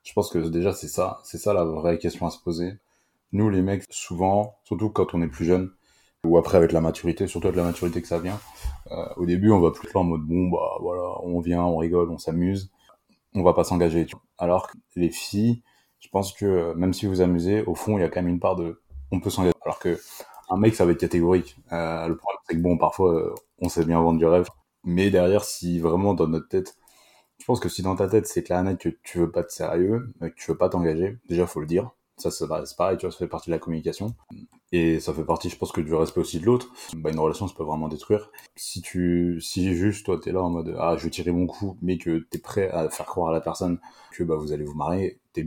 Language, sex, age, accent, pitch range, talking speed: French, male, 20-39, French, 85-95 Hz, 265 wpm